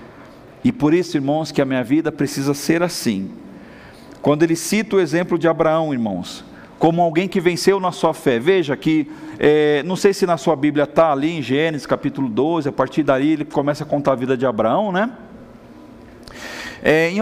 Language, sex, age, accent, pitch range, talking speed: Portuguese, male, 40-59, Brazilian, 150-210 Hz, 185 wpm